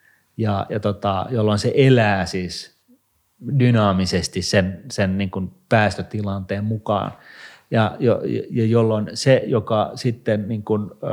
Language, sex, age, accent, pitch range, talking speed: Finnish, male, 30-49, native, 100-120 Hz, 115 wpm